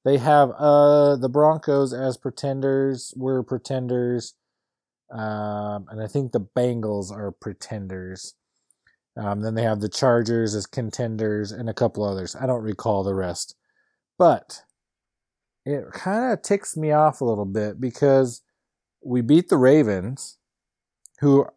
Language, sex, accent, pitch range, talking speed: English, male, American, 110-140 Hz, 140 wpm